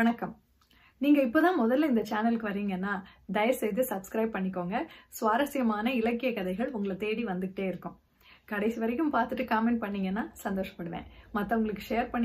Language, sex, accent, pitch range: Tamil, female, native, 200-255 Hz